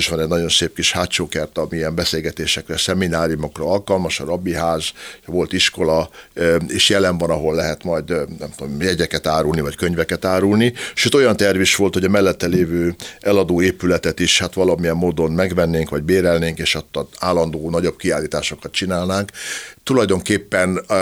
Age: 60-79